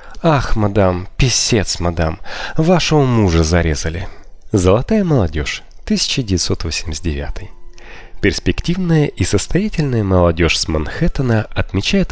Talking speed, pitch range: 85 wpm, 85-130 Hz